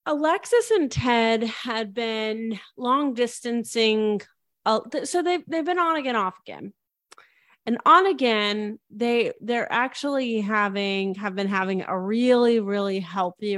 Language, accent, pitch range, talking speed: English, American, 190-235 Hz, 140 wpm